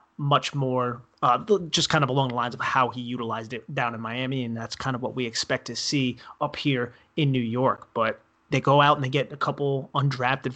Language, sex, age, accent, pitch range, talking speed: English, male, 30-49, American, 120-140 Hz, 235 wpm